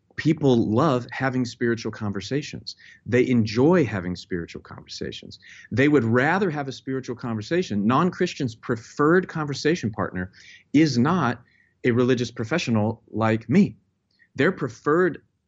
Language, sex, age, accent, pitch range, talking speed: English, male, 40-59, American, 110-160 Hz, 115 wpm